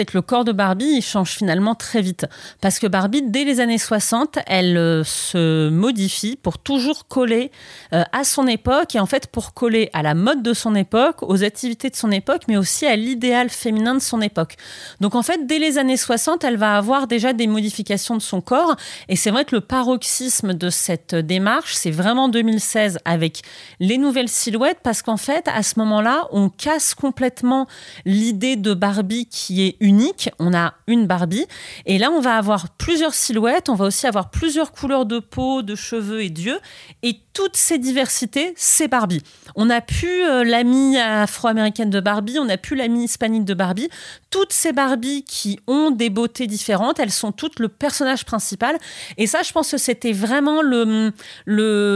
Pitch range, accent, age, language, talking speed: 210-270 Hz, French, 40-59, French, 195 wpm